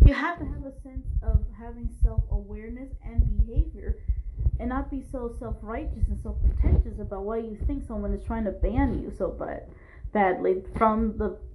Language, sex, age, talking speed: English, female, 20-39, 170 wpm